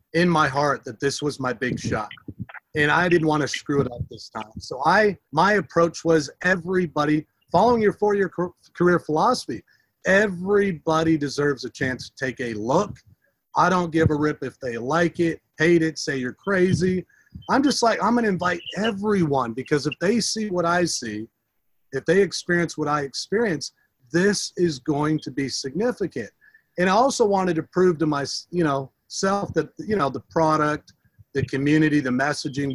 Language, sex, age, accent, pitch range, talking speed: English, male, 40-59, American, 135-175 Hz, 180 wpm